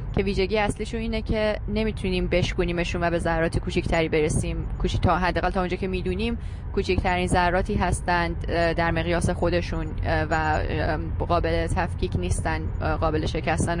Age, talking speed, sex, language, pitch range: 20-39, 135 wpm, female, Persian, 165-195 Hz